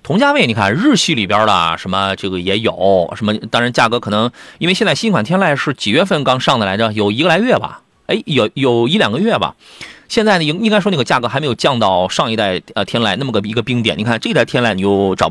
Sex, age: male, 30-49